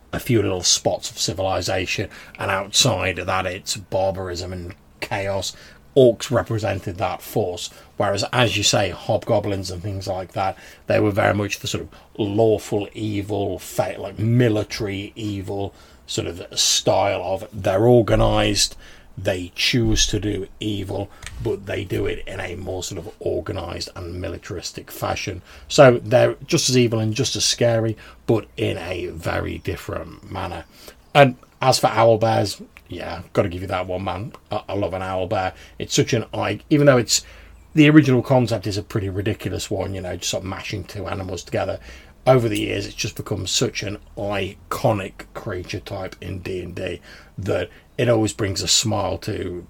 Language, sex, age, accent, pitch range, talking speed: English, male, 30-49, British, 95-115 Hz, 170 wpm